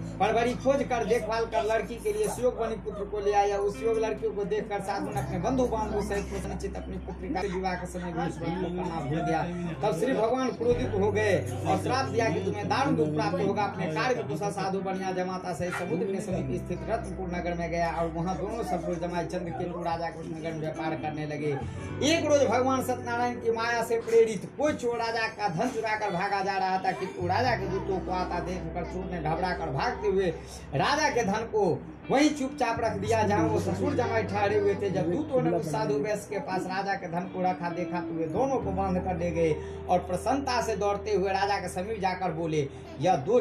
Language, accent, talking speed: Hindi, native, 130 wpm